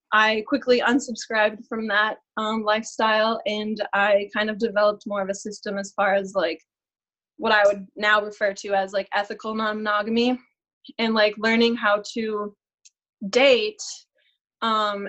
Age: 20-39